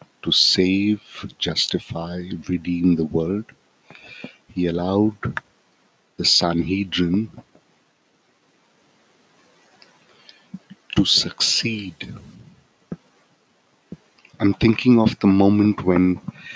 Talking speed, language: 65 wpm, English